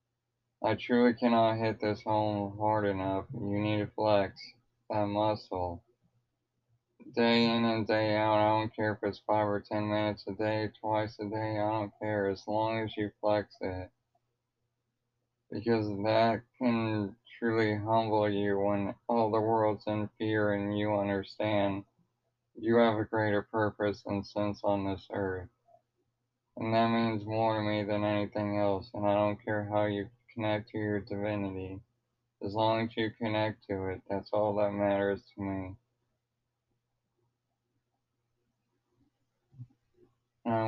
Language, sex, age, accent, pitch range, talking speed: English, male, 20-39, American, 105-115 Hz, 150 wpm